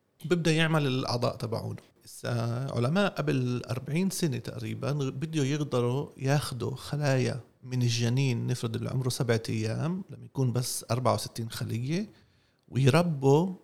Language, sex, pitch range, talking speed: Arabic, male, 120-150 Hz, 110 wpm